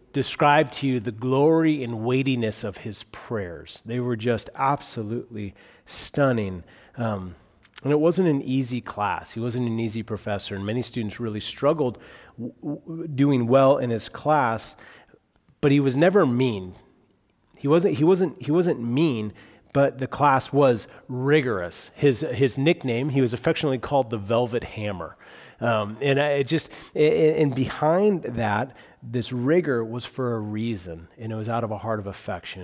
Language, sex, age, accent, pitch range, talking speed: English, male, 30-49, American, 105-140 Hz, 160 wpm